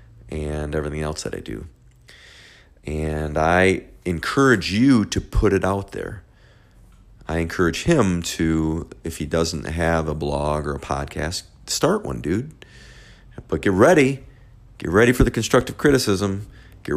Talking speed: 145 wpm